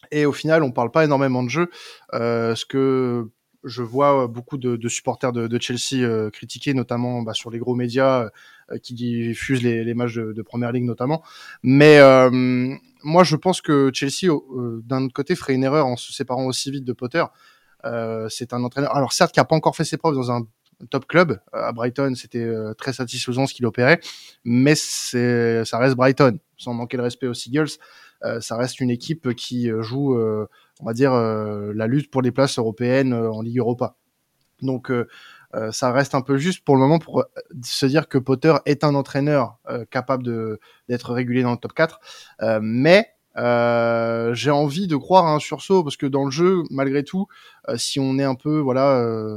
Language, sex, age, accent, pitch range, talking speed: French, male, 20-39, French, 120-145 Hz, 210 wpm